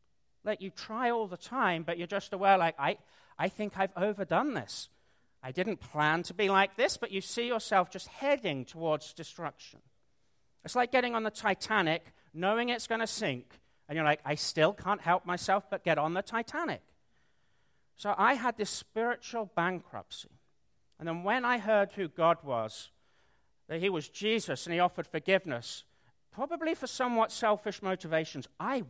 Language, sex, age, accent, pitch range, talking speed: English, male, 40-59, British, 160-210 Hz, 175 wpm